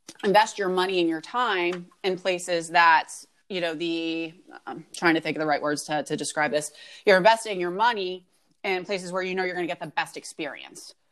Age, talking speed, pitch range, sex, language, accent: 30-49, 215 wpm, 170-195 Hz, female, English, American